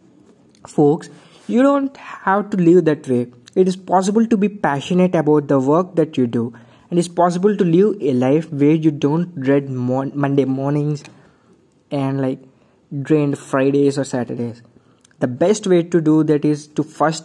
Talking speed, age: 165 wpm, 20-39